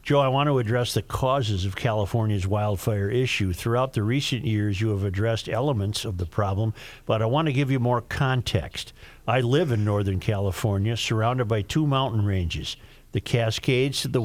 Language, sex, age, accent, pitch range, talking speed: English, male, 50-69, American, 105-135 Hz, 185 wpm